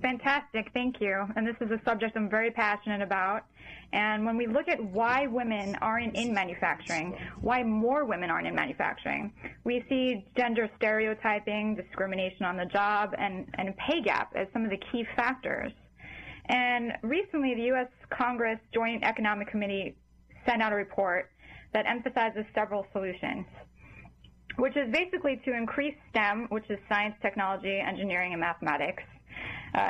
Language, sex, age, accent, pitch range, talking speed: English, female, 10-29, American, 205-245 Hz, 155 wpm